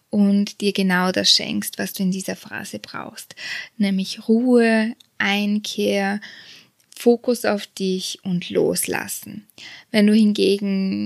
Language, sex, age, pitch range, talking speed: German, female, 20-39, 195-215 Hz, 120 wpm